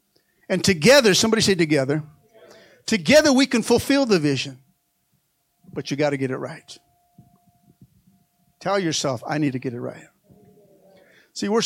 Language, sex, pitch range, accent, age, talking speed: English, male, 145-200 Hz, American, 50-69, 145 wpm